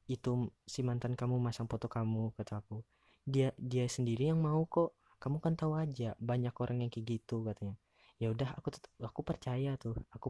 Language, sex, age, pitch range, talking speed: Indonesian, female, 20-39, 110-130 Hz, 190 wpm